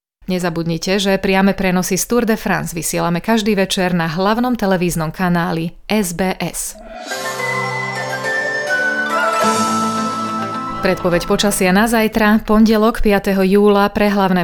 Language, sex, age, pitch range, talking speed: Slovak, female, 30-49, 175-215 Hz, 105 wpm